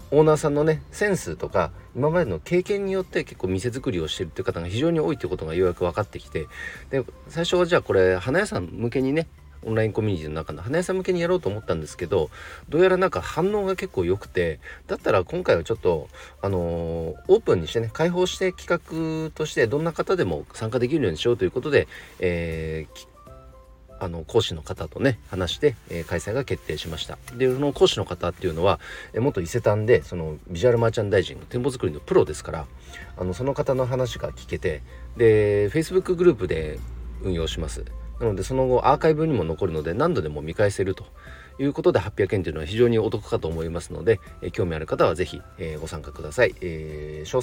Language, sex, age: Japanese, male, 40-59